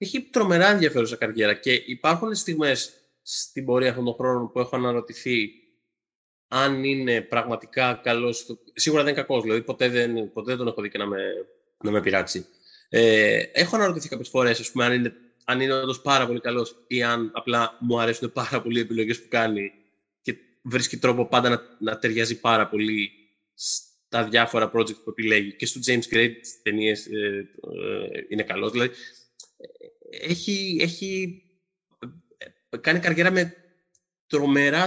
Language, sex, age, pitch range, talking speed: Greek, male, 20-39, 115-155 Hz, 160 wpm